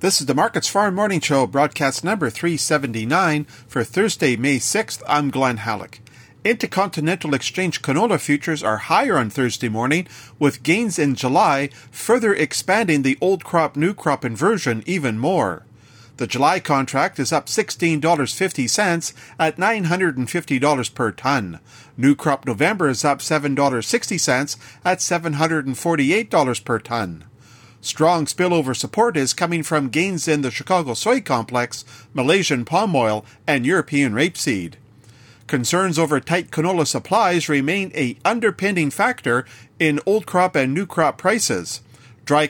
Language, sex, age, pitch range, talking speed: English, male, 40-59, 125-175 Hz, 135 wpm